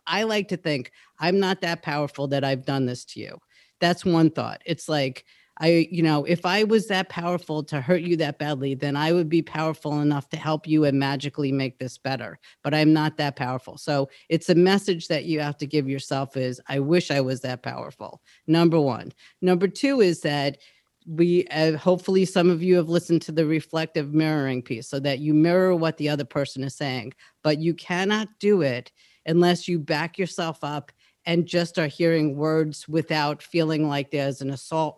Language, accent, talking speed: English, American, 200 wpm